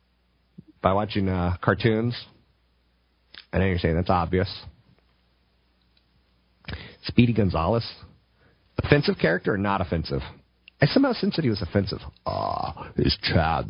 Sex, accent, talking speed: male, American, 120 wpm